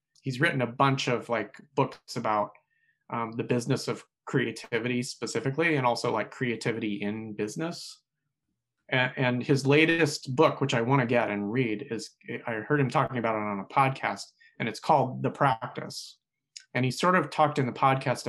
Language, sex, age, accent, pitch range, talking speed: English, male, 30-49, American, 120-150 Hz, 175 wpm